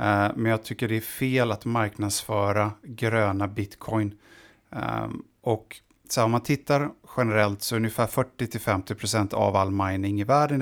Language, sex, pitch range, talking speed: Swedish, male, 100-120 Hz, 140 wpm